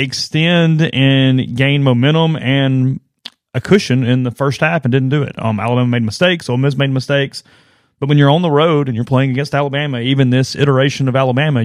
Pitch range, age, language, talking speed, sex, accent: 120-140 Hz, 30-49, English, 200 wpm, male, American